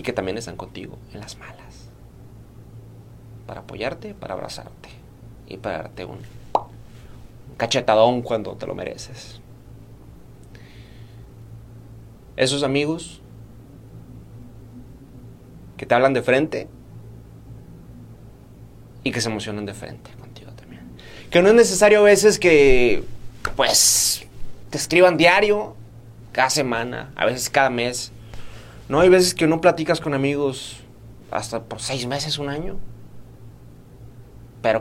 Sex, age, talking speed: male, 30-49, 120 wpm